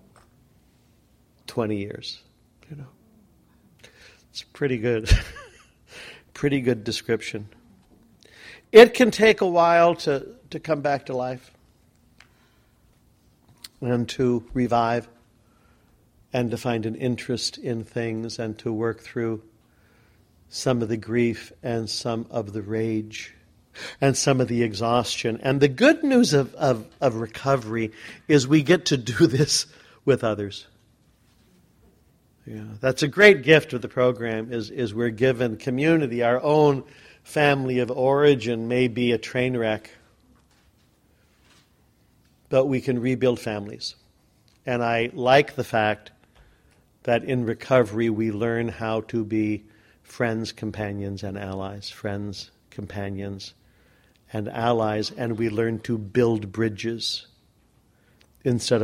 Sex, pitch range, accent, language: male, 110-130 Hz, American, English